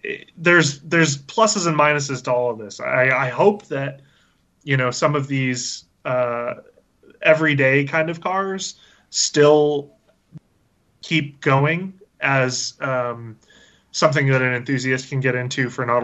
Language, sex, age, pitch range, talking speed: English, male, 20-39, 120-145 Hz, 140 wpm